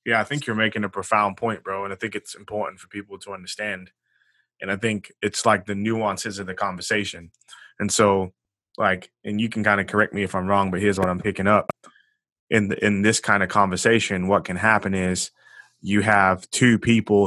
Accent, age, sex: American, 20-39, male